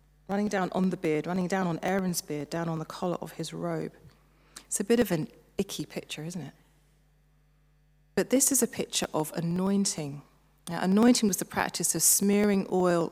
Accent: British